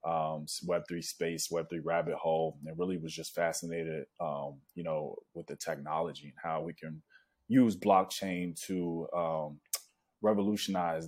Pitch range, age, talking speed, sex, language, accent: 75-90 Hz, 20-39, 140 wpm, male, English, American